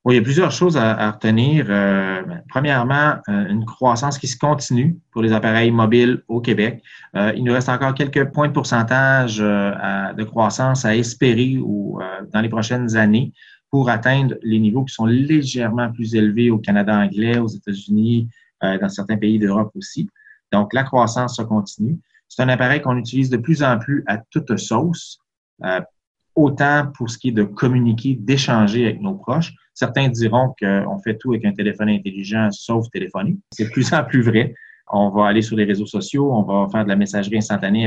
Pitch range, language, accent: 105-135 Hz, French, Canadian